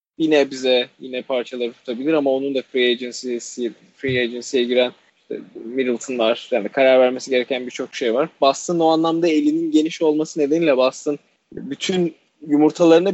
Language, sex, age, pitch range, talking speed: Turkish, male, 20-39, 125-150 Hz, 150 wpm